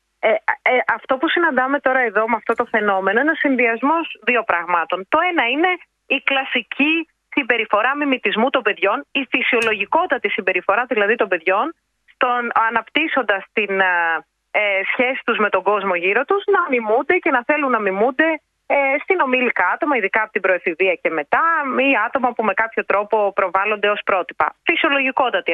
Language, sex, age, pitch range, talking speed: Greek, female, 30-49, 210-295 Hz, 160 wpm